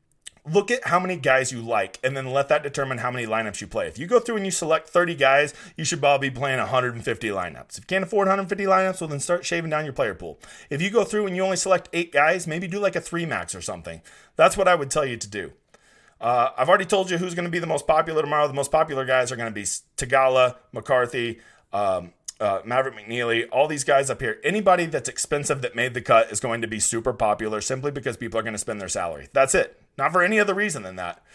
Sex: male